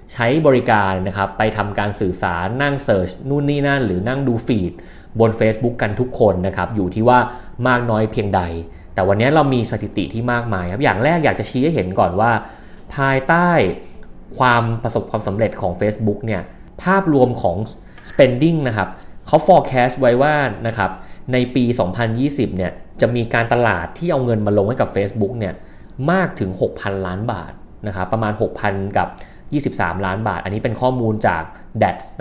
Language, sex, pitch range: Thai, male, 95-125 Hz